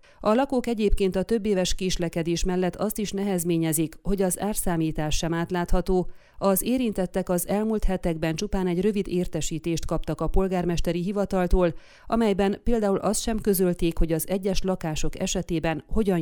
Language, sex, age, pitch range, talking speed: Hungarian, female, 30-49, 165-200 Hz, 150 wpm